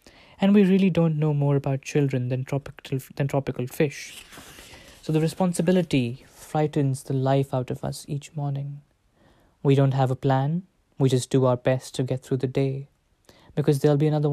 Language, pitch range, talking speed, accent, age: English, 135-150 Hz, 180 wpm, Indian, 20-39